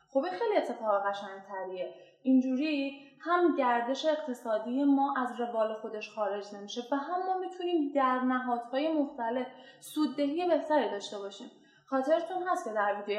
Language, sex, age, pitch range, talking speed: Persian, female, 10-29, 210-275 Hz, 140 wpm